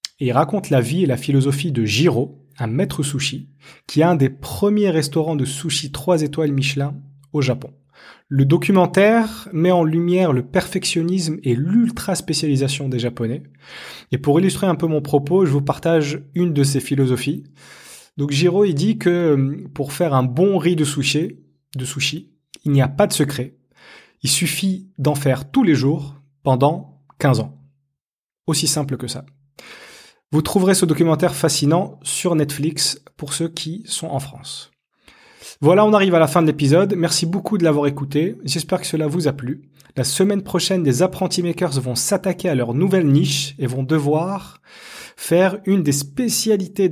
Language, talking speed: French, 175 wpm